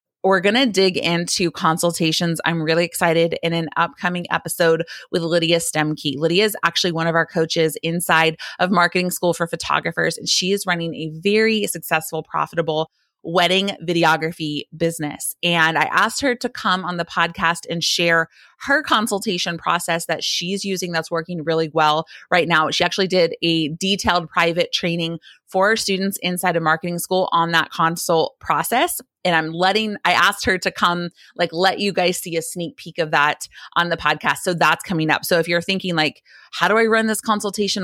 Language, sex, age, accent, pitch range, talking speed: English, female, 30-49, American, 165-195 Hz, 185 wpm